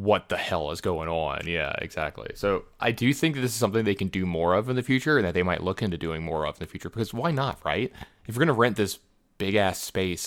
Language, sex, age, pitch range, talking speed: English, male, 20-39, 90-115 Hz, 285 wpm